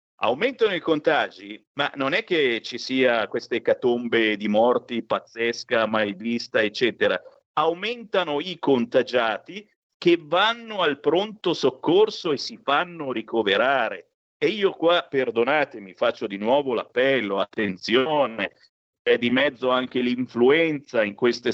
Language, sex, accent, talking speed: Italian, male, native, 125 wpm